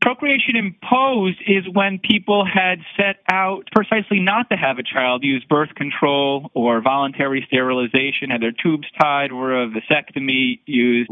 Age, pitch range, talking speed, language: 30-49, 125-170 Hz, 150 wpm, English